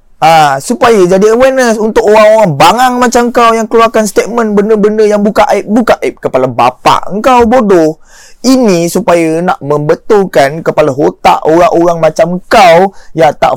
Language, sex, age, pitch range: Malay, male, 20-39, 155-215 Hz